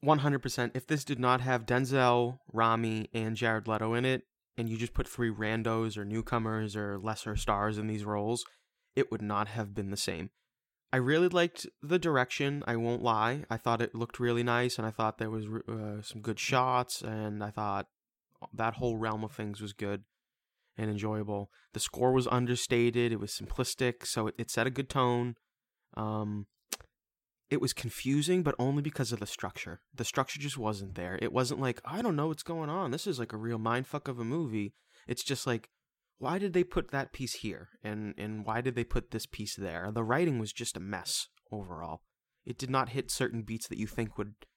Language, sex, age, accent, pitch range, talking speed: English, male, 20-39, American, 105-125 Hz, 205 wpm